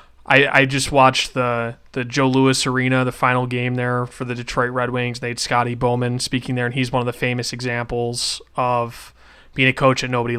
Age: 20-39